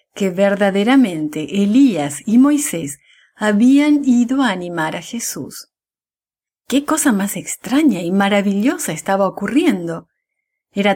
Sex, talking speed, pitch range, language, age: female, 110 wpm, 185-255 Hz, English, 40-59